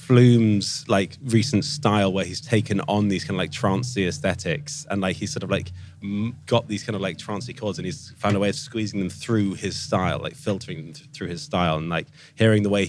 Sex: male